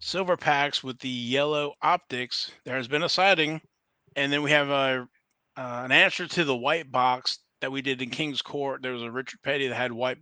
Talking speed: 215 wpm